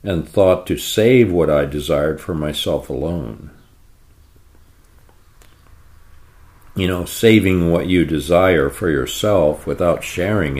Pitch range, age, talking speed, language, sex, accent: 75-100 Hz, 50-69, 115 wpm, English, male, American